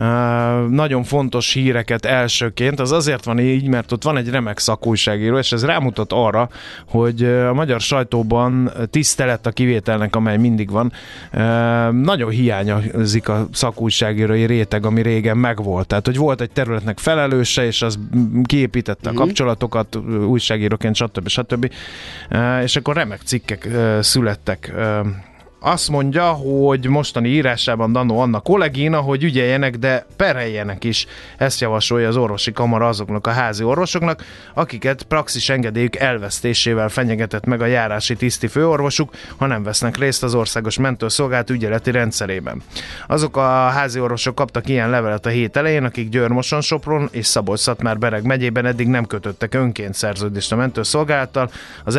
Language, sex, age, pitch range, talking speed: Hungarian, male, 30-49, 110-130 Hz, 140 wpm